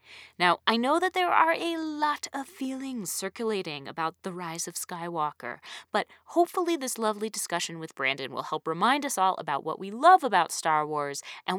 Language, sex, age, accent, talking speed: English, female, 30-49, American, 185 wpm